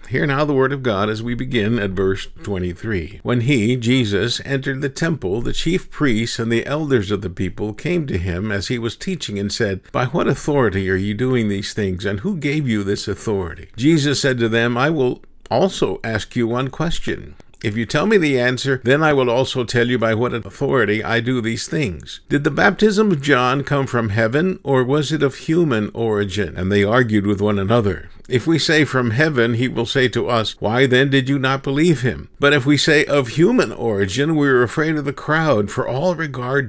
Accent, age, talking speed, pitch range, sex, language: American, 50-69, 220 wpm, 105-145 Hz, male, English